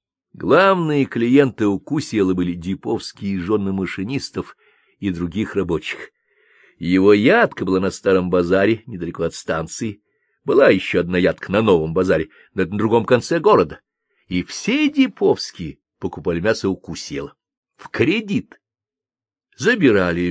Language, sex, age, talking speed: Russian, male, 50-69, 120 wpm